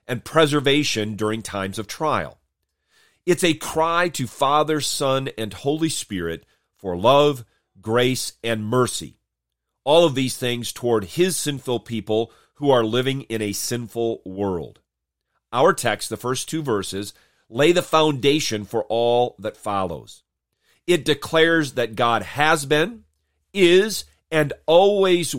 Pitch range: 105-150 Hz